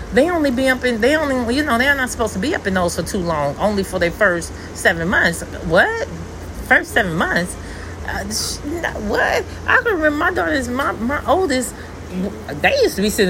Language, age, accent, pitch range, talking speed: English, 30-49, American, 160-230 Hz, 205 wpm